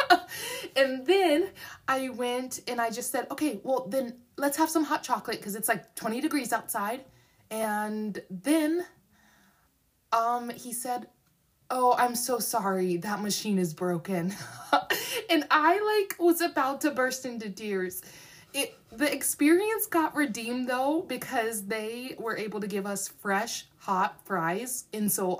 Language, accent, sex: English, American, female